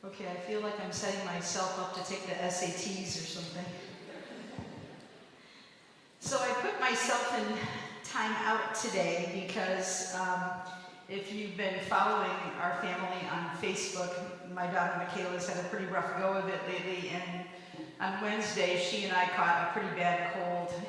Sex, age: female, 50-69